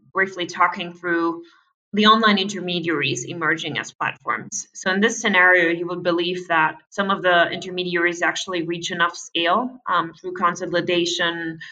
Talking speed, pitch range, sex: 145 wpm, 165-185 Hz, female